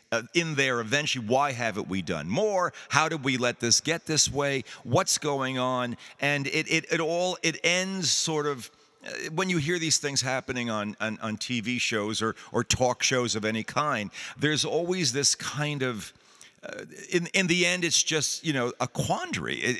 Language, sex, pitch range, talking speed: English, male, 120-160 Hz, 195 wpm